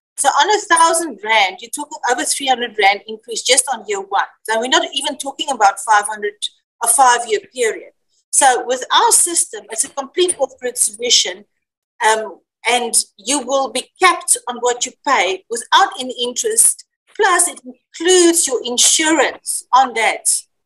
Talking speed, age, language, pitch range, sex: 150 wpm, 40-59, English, 235-380 Hz, female